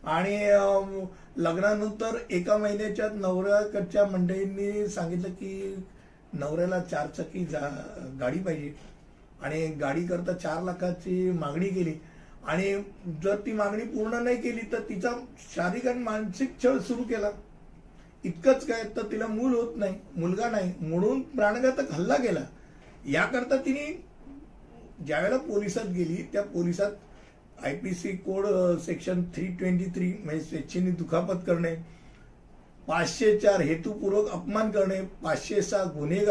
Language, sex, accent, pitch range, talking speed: Hindi, male, native, 175-225 Hz, 70 wpm